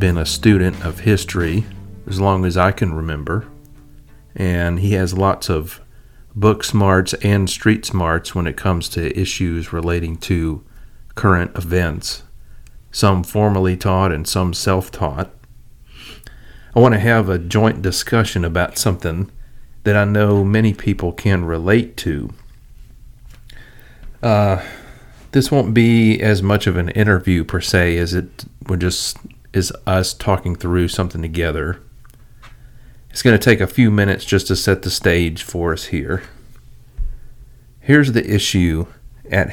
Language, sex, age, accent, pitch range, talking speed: English, male, 40-59, American, 90-110 Hz, 140 wpm